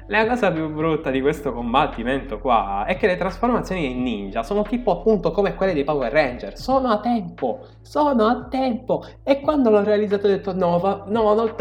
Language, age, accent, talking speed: Italian, 20-39, native, 195 wpm